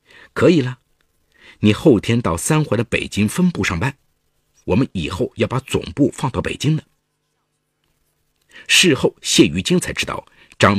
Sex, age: male, 50-69